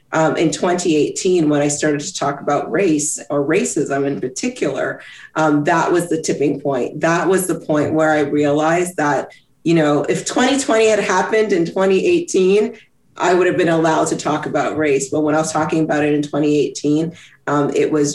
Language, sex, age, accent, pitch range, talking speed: English, female, 40-59, American, 145-165 Hz, 190 wpm